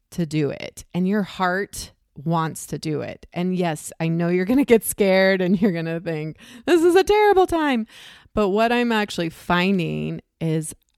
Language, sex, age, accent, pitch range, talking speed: English, female, 30-49, American, 160-200 Hz, 190 wpm